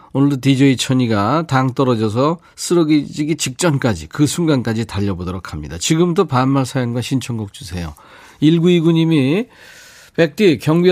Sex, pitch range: male, 125-165 Hz